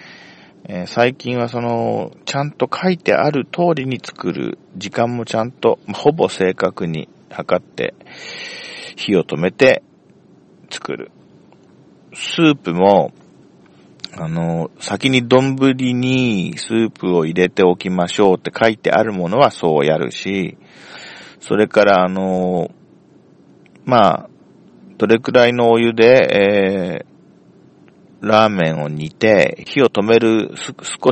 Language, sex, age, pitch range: Japanese, male, 40-59, 95-130 Hz